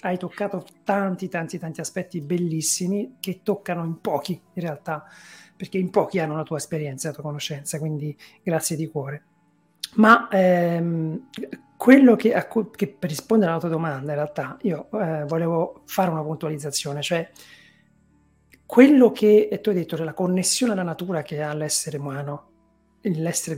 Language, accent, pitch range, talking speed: Italian, native, 155-200 Hz, 155 wpm